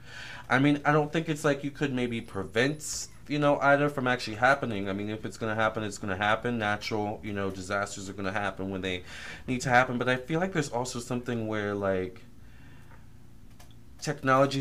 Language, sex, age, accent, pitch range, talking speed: English, male, 20-39, American, 100-120 Hz, 210 wpm